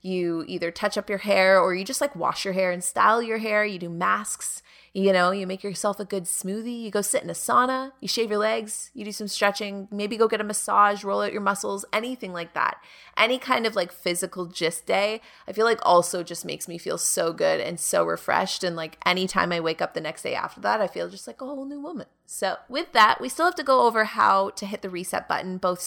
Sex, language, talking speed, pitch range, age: female, English, 255 wpm, 185-245 Hz, 20-39